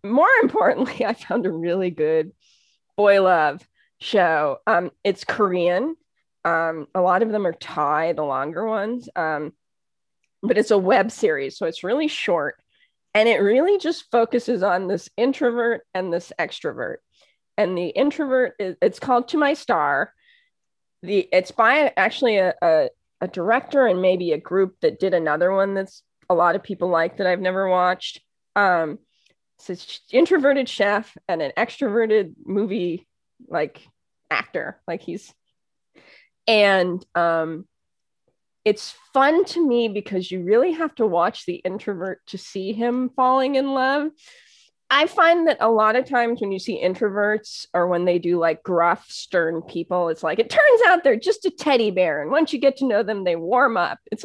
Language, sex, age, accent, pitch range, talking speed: English, female, 20-39, American, 185-270 Hz, 165 wpm